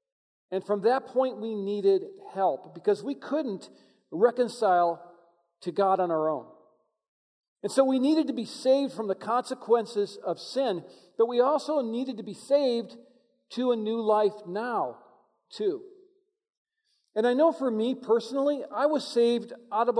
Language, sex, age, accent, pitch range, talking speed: English, male, 50-69, American, 185-265 Hz, 155 wpm